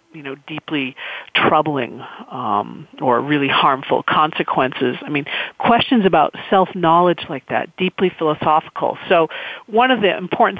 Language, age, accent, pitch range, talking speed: English, 40-59, American, 165-210 Hz, 130 wpm